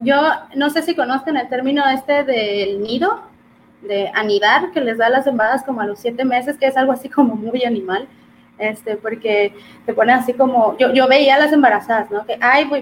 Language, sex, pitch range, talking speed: Spanish, female, 215-280 Hz, 210 wpm